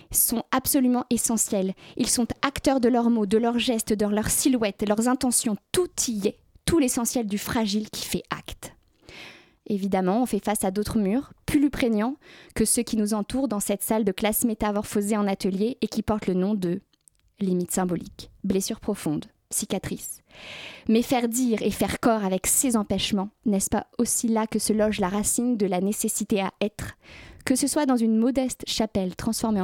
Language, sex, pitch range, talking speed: French, female, 205-240 Hz, 185 wpm